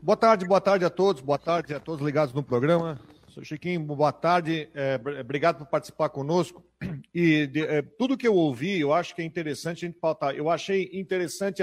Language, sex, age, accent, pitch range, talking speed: Portuguese, male, 40-59, Brazilian, 160-220 Hz, 205 wpm